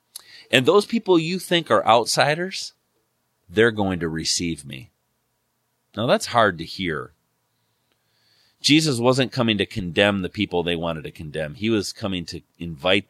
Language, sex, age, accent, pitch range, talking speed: English, male, 40-59, American, 80-110 Hz, 150 wpm